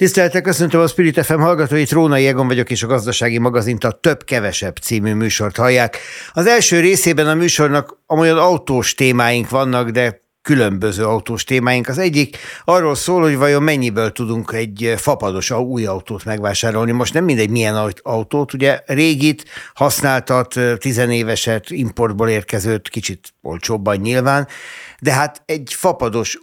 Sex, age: male, 60-79